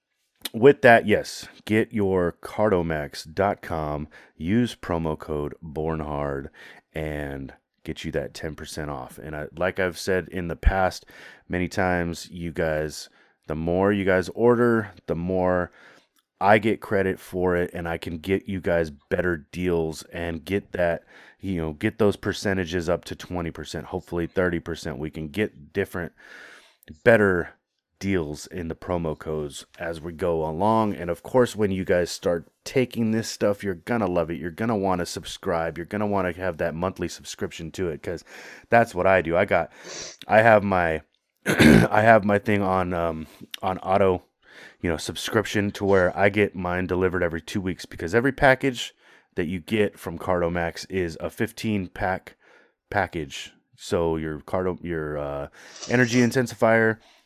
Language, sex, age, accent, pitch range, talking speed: English, male, 30-49, American, 80-100 Hz, 160 wpm